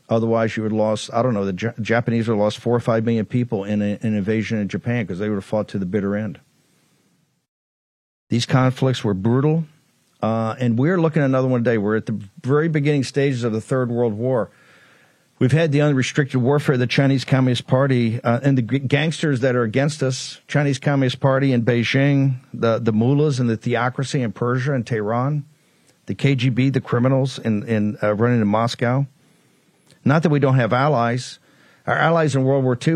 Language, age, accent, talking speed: English, 50-69, American, 210 wpm